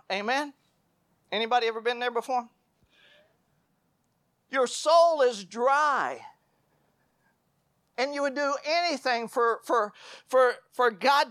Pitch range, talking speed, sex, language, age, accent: 230-285 Hz, 105 wpm, male, English, 50-69, American